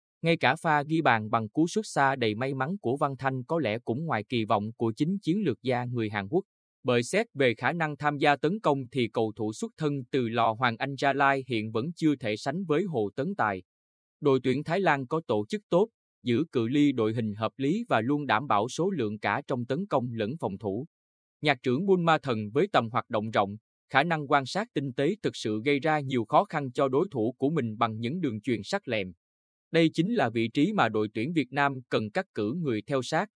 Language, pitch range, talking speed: Vietnamese, 110-150 Hz, 245 wpm